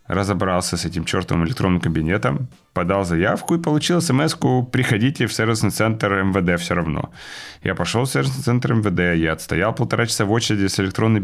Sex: male